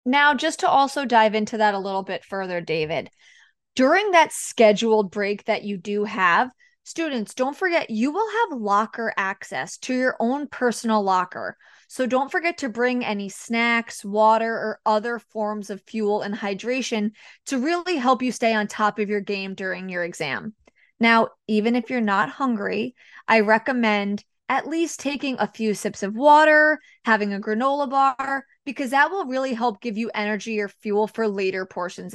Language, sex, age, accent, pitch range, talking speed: English, female, 20-39, American, 205-265 Hz, 175 wpm